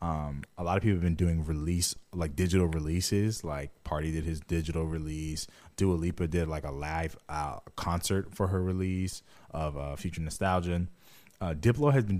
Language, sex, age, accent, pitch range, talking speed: English, male, 20-39, American, 80-100 Hz, 180 wpm